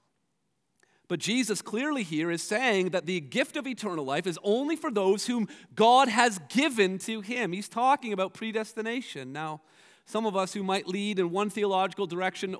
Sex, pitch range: male, 180-240 Hz